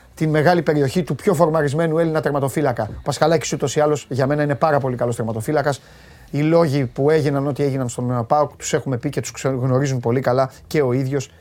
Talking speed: 205 wpm